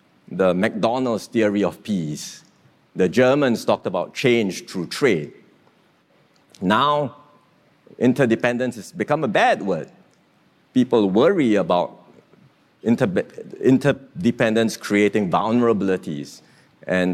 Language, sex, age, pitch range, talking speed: English, male, 50-69, 95-120 Hz, 90 wpm